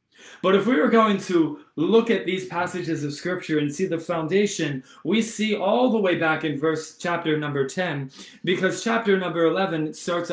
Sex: male